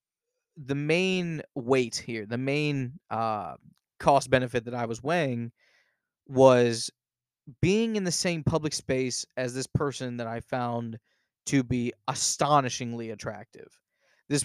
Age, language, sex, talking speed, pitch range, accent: 20-39, English, male, 130 wpm, 120-145 Hz, American